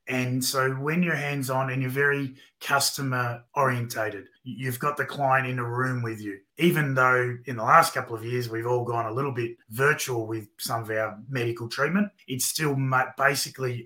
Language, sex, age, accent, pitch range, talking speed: English, male, 30-49, Australian, 120-135 Hz, 180 wpm